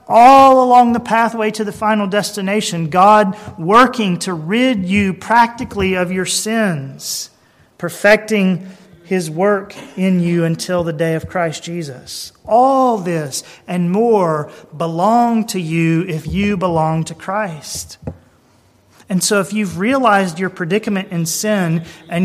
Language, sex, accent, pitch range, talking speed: English, male, American, 170-215 Hz, 135 wpm